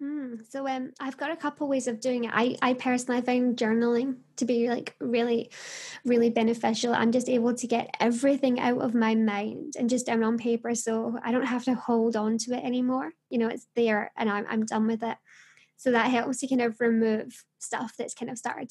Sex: female